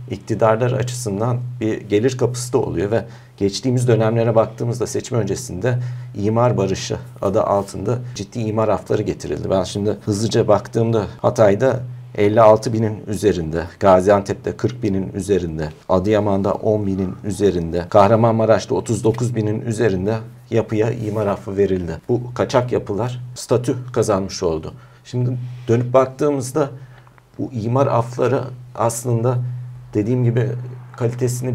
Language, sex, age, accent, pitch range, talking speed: Turkish, male, 50-69, native, 110-125 Hz, 110 wpm